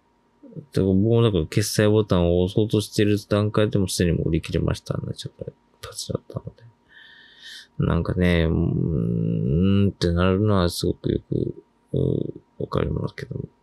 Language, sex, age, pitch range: Japanese, male, 20-39, 85-110 Hz